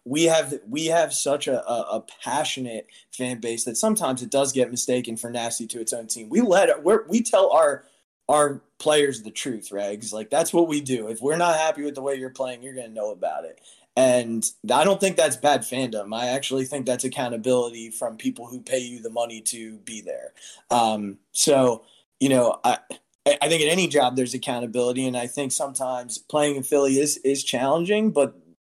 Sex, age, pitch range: male, 20-39, 120-140 Hz